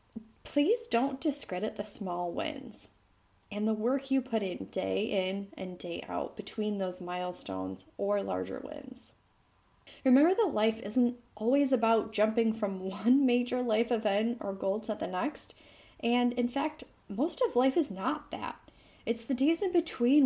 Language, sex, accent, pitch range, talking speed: English, female, American, 210-290 Hz, 160 wpm